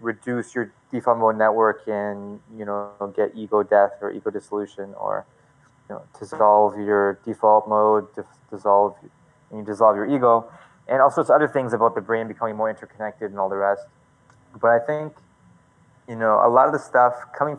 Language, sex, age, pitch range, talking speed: English, male, 20-39, 105-125 Hz, 180 wpm